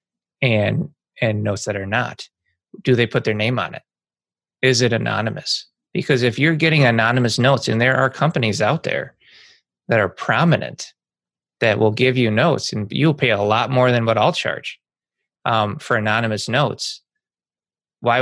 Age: 20-39